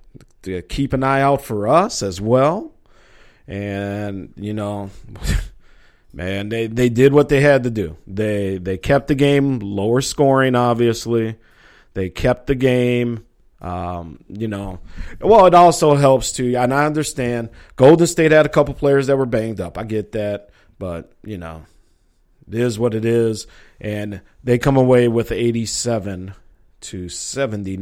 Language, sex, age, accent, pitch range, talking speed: English, male, 40-59, American, 100-135 Hz, 160 wpm